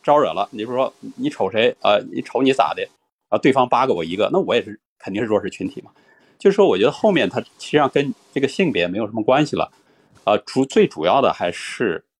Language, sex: Chinese, male